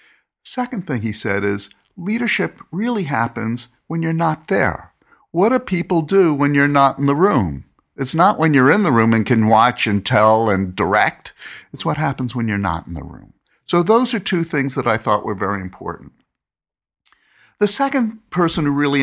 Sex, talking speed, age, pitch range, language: male, 190 wpm, 50-69, 115-160 Hz, English